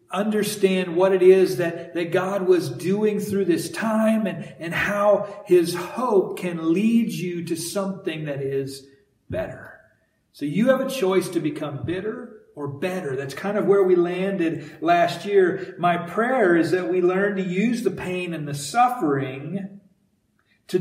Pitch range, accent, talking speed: 165-195 Hz, American, 165 wpm